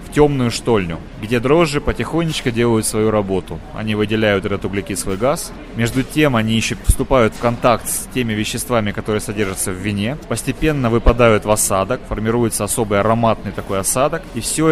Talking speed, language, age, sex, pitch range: 155 wpm, Russian, 30-49, male, 105-140 Hz